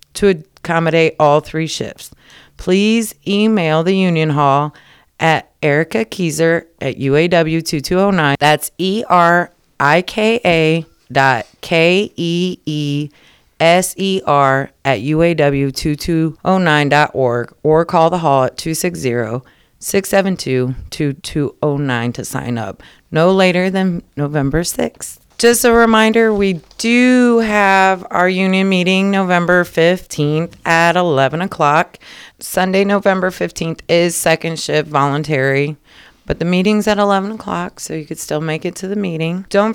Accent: American